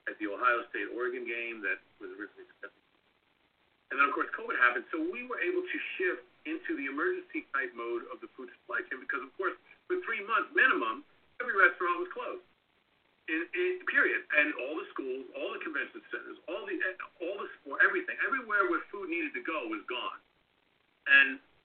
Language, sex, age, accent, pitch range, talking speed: English, male, 50-69, American, 325-370 Hz, 185 wpm